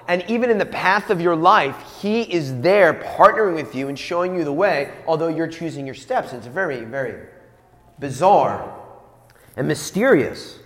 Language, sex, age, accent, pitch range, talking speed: English, male, 30-49, American, 165-225 Hz, 170 wpm